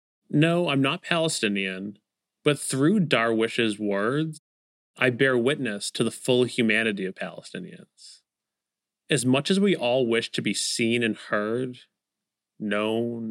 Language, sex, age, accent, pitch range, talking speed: English, male, 30-49, American, 110-150 Hz, 130 wpm